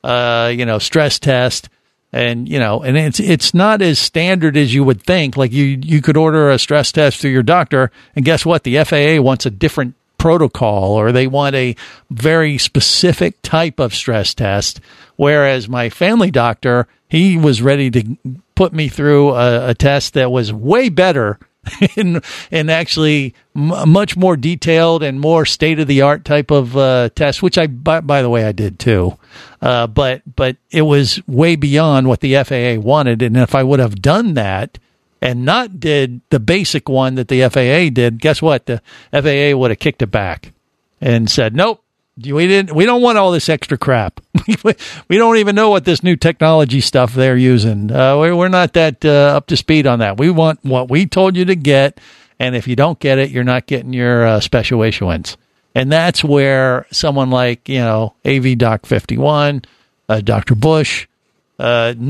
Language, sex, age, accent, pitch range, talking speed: English, male, 50-69, American, 125-160 Hz, 185 wpm